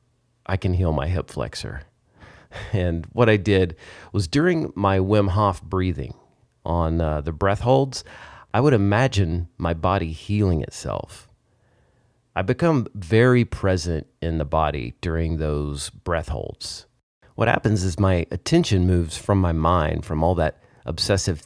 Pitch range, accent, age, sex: 85-110 Hz, American, 30-49, male